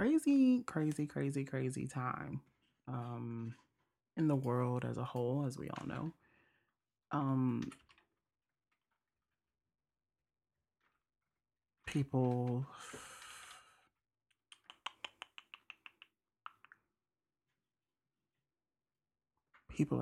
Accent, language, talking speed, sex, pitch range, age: American, English, 55 wpm, male, 115-140 Hz, 30-49